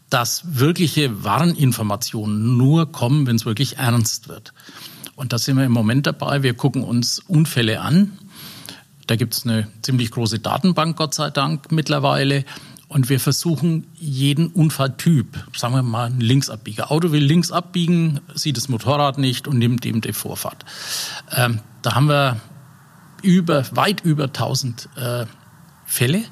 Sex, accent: male, German